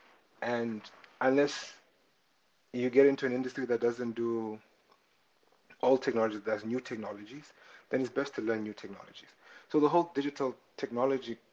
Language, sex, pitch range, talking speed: English, male, 110-125 Hz, 145 wpm